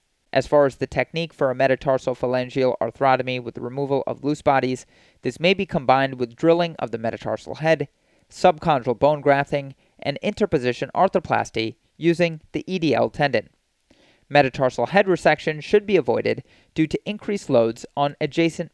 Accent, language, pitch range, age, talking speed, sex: American, English, 125-170 Hz, 30-49, 150 wpm, male